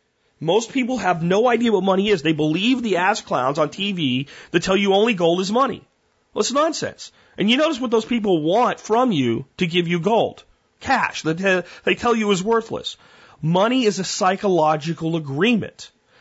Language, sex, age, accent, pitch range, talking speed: English, male, 40-59, American, 150-200 Hz, 185 wpm